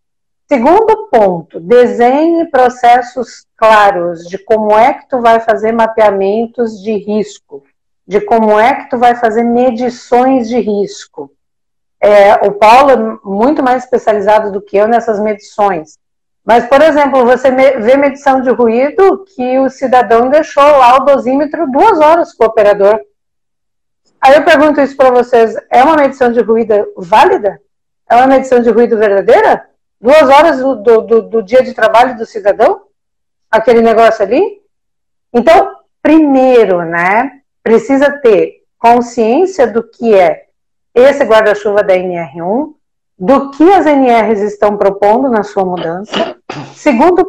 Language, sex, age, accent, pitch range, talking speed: Portuguese, female, 50-69, Brazilian, 220-280 Hz, 140 wpm